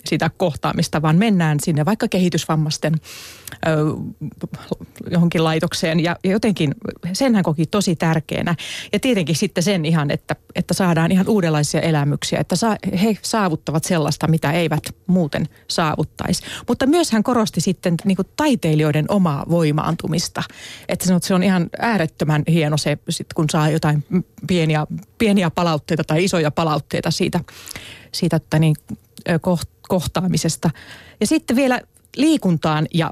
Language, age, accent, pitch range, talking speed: Finnish, 30-49, native, 160-185 Hz, 140 wpm